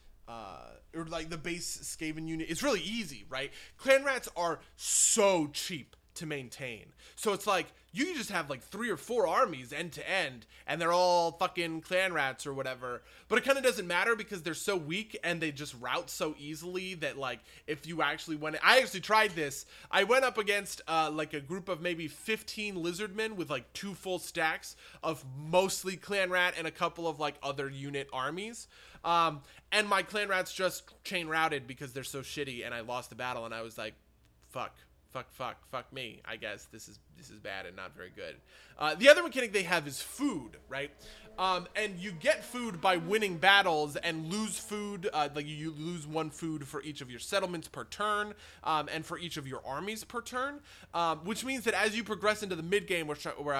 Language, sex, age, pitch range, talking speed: English, male, 20-39, 150-205 Hz, 210 wpm